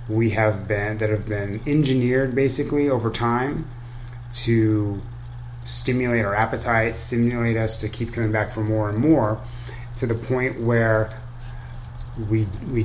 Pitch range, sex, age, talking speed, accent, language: 110-120 Hz, male, 30-49, 140 wpm, American, English